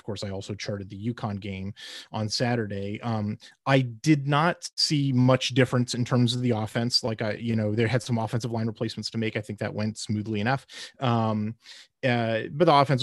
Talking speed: 205 wpm